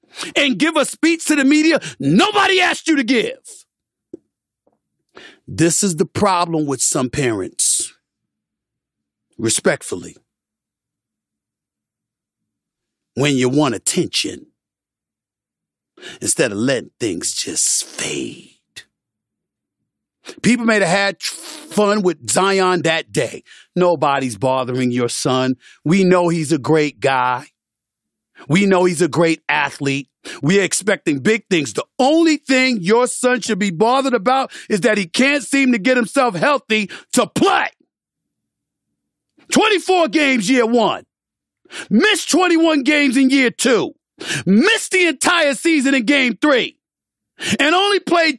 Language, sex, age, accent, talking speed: English, male, 50-69, American, 125 wpm